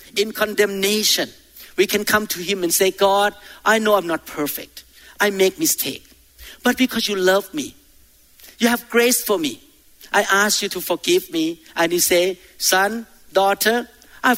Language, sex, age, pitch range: Thai, male, 50-69, 185-250 Hz